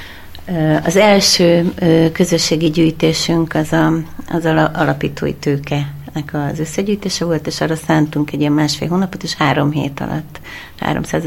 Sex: female